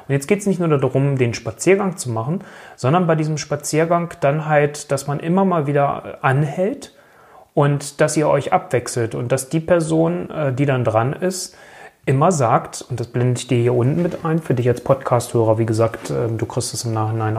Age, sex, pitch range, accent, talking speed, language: 30-49, male, 120-165 Hz, German, 200 wpm, German